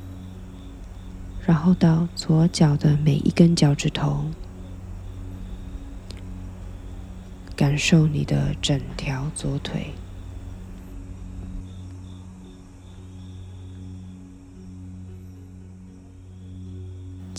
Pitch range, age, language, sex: 95-150 Hz, 20-39, Chinese, female